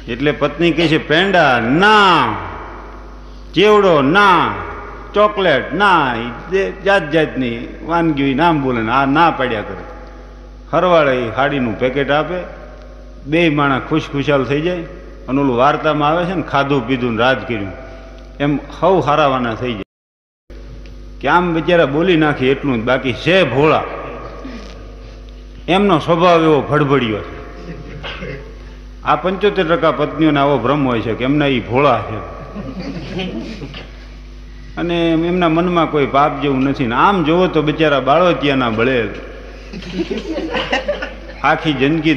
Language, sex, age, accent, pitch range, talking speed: Gujarati, male, 50-69, native, 130-160 Hz, 125 wpm